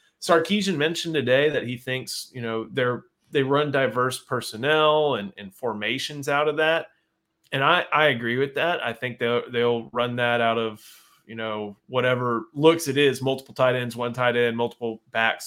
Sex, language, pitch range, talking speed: male, English, 115-140 Hz, 180 wpm